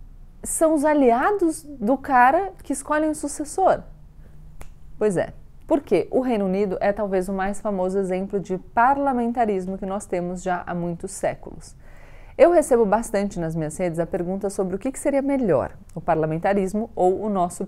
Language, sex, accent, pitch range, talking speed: Portuguese, female, Brazilian, 175-230 Hz, 165 wpm